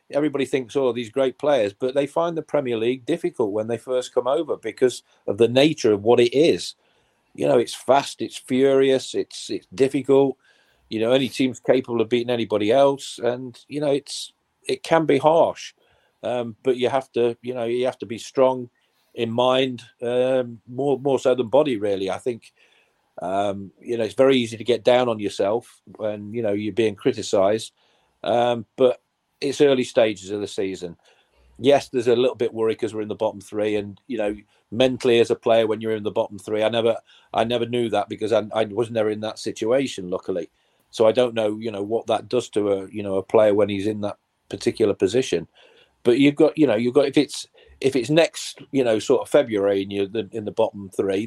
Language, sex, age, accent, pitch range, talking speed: English, male, 40-59, British, 105-130 Hz, 215 wpm